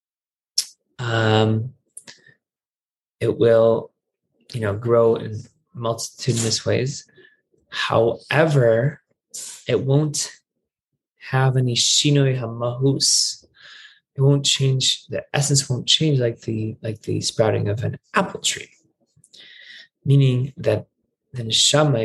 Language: English